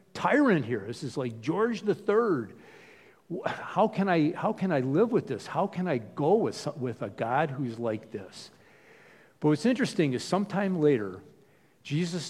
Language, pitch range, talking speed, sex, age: English, 120-160 Hz, 165 wpm, male, 50-69